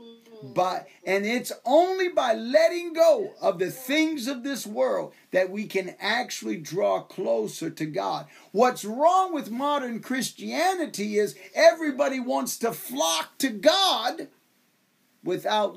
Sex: male